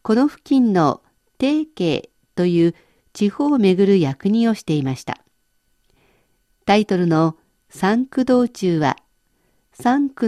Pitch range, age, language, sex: 170-235 Hz, 50-69, Japanese, female